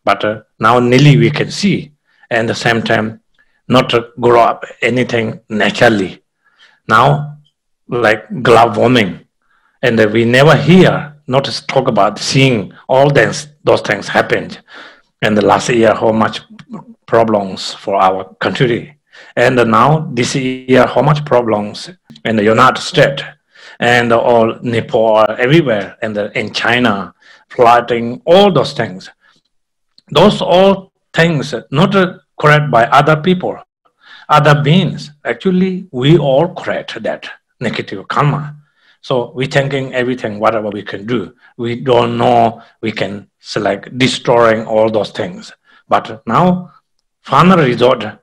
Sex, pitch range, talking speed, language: male, 115-160 Hz, 135 wpm, English